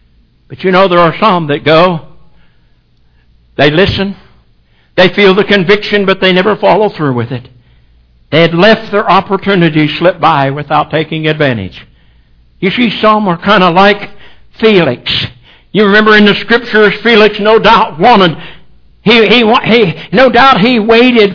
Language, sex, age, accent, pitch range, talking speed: English, male, 60-79, American, 165-225 Hz, 155 wpm